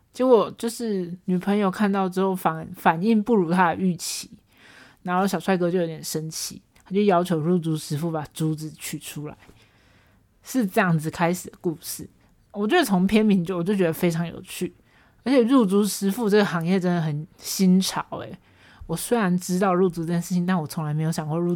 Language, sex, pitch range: Chinese, male, 160-195 Hz